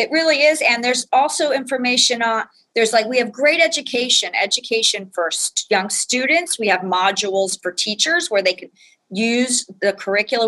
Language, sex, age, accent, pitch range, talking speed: English, female, 40-59, American, 195-250 Hz, 165 wpm